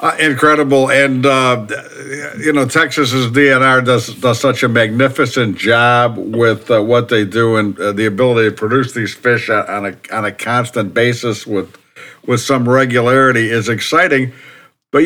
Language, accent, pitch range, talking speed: English, American, 125-150 Hz, 160 wpm